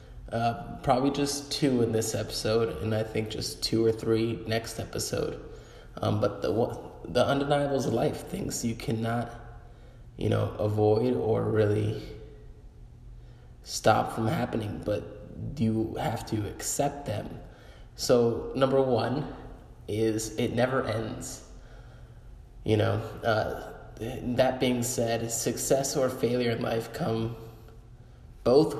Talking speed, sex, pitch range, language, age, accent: 125 wpm, male, 110-120 Hz, English, 20-39, American